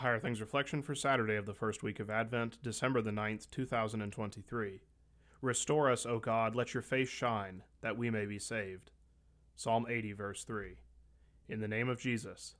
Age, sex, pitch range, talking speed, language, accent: 30-49, male, 105-125 Hz, 175 wpm, English, American